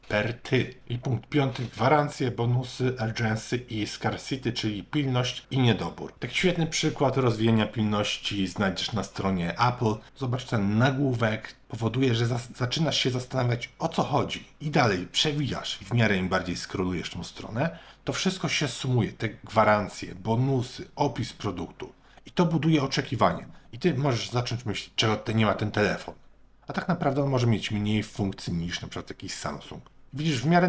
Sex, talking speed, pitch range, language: male, 160 wpm, 105-135 Hz, Polish